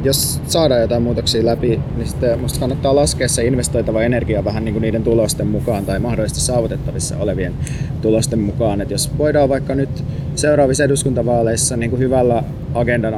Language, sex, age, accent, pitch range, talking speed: Finnish, male, 30-49, native, 115-140 Hz, 160 wpm